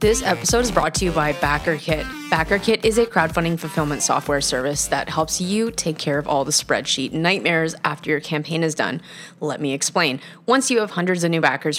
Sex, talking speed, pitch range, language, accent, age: female, 205 wpm, 160-200 Hz, English, American, 20-39